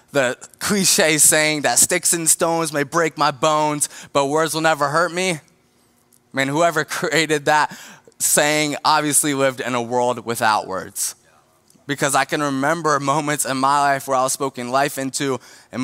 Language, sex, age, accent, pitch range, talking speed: English, male, 20-39, American, 130-165 Hz, 165 wpm